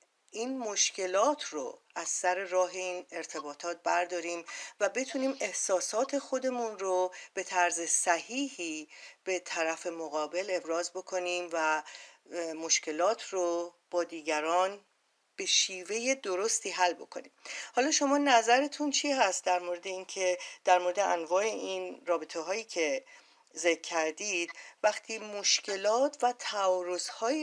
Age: 40-59